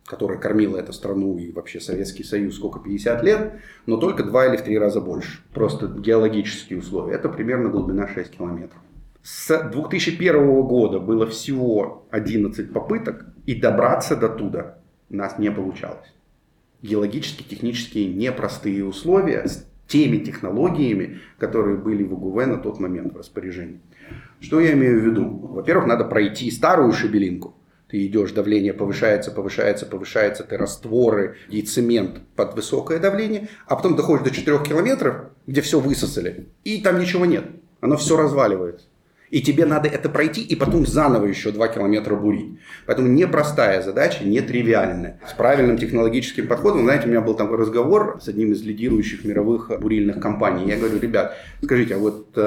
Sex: male